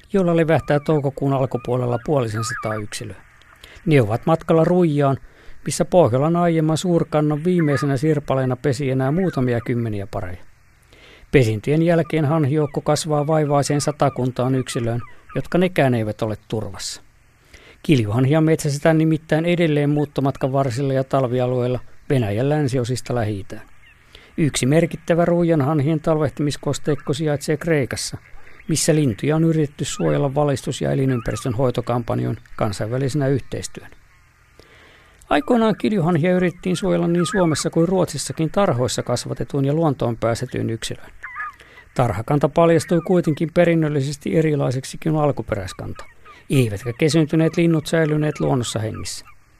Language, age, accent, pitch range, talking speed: Finnish, 50-69, native, 125-160 Hz, 110 wpm